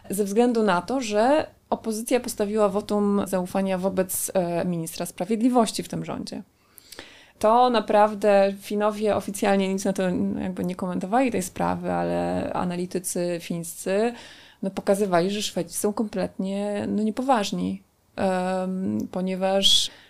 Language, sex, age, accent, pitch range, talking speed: Polish, female, 20-39, native, 185-220 Hz, 120 wpm